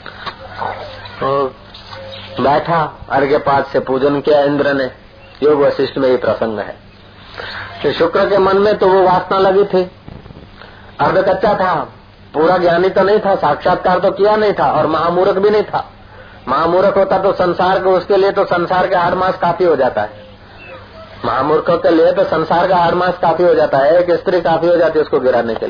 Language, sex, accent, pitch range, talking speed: Hindi, male, native, 115-175 Hz, 160 wpm